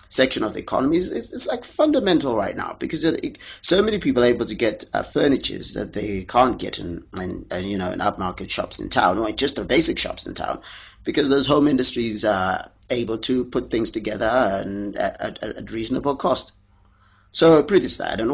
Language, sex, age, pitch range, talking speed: English, male, 30-49, 100-145 Hz, 205 wpm